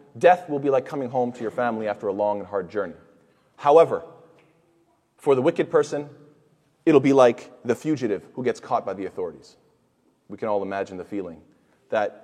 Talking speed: 185 wpm